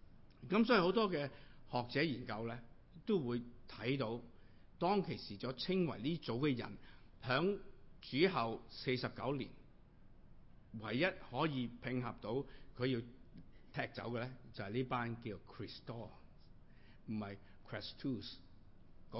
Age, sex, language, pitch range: 50-69, male, Chinese, 105-135 Hz